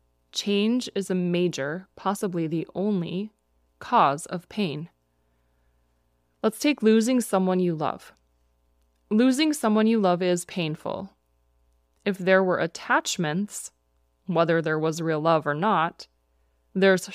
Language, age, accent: English, 20-39, American